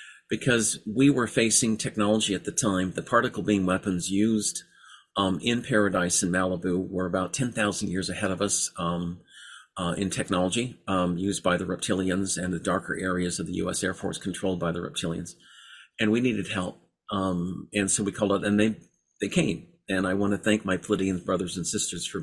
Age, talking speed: 50-69, 190 wpm